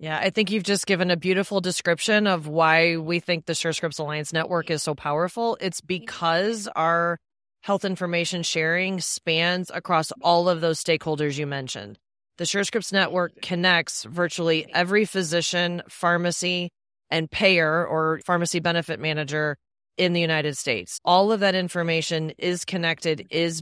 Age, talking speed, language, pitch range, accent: 30-49, 150 wpm, English, 160-190 Hz, American